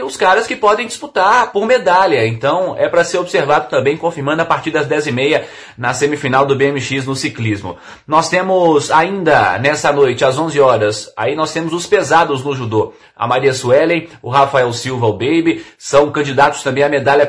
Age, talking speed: 30-49, 185 wpm